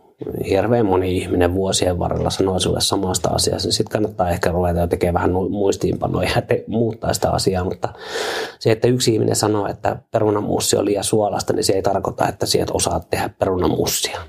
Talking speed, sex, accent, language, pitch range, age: 170 wpm, male, native, Finnish, 90-120 Hz, 30-49